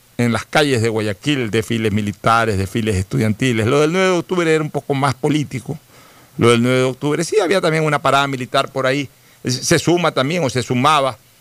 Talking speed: 200 wpm